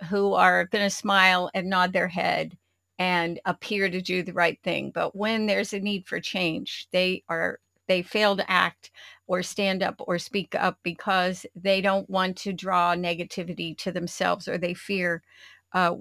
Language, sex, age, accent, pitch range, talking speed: English, female, 50-69, American, 180-200 Hz, 180 wpm